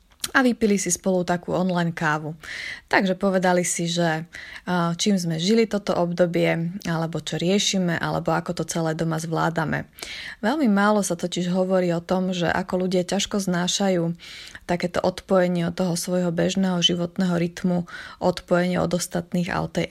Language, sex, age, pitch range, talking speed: Slovak, female, 20-39, 175-200 Hz, 155 wpm